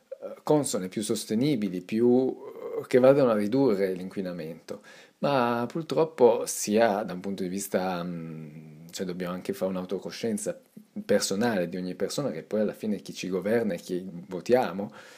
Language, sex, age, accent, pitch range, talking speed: Italian, male, 40-59, native, 85-110 Hz, 140 wpm